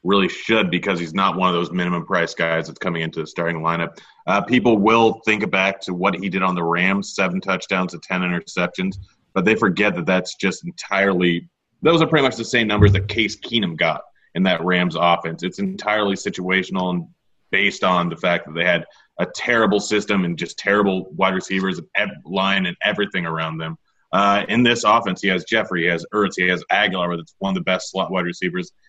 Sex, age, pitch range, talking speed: male, 30-49, 90-100 Hz, 210 wpm